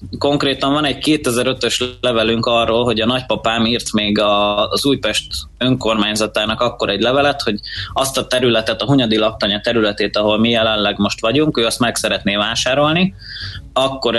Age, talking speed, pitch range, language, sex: 20-39, 150 wpm, 105-125 Hz, Hungarian, male